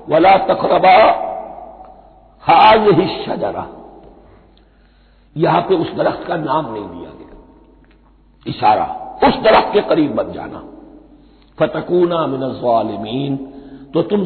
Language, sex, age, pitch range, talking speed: Hindi, male, 60-79, 145-235 Hz, 110 wpm